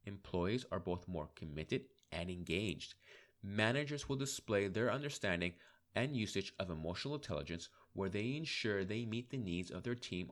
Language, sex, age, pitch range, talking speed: English, male, 30-49, 90-150 Hz, 155 wpm